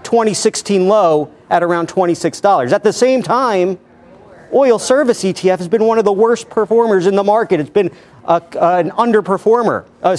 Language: English